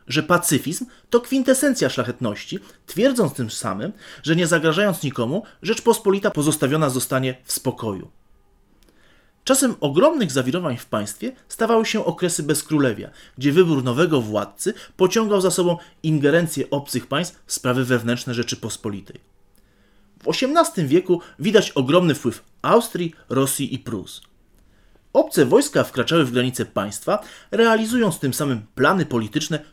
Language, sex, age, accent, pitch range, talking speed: Polish, male, 30-49, native, 125-195 Hz, 125 wpm